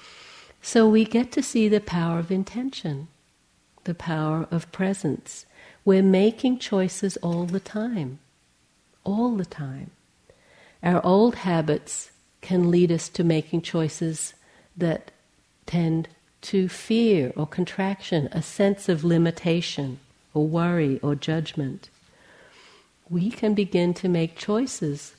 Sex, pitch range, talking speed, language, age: female, 145-185 Hz, 120 wpm, English, 60-79